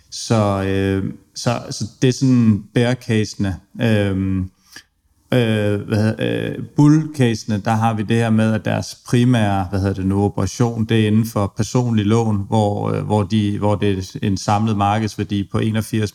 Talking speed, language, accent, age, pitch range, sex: 165 wpm, Danish, native, 30-49, 100-115 Hz, male